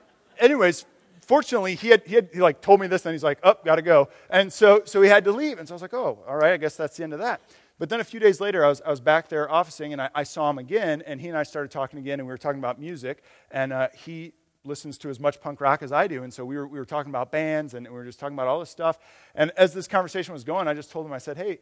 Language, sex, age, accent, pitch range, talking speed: English, male, 40-59, American, 140-190 Hz, 320 wpm